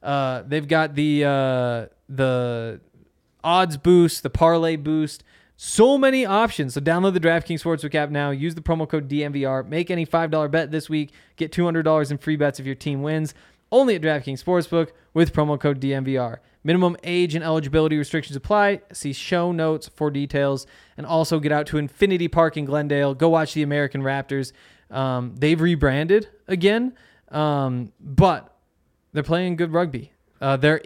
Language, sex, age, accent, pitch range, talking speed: English, male, 20-39, American, 140-170 Hz, 165 wpm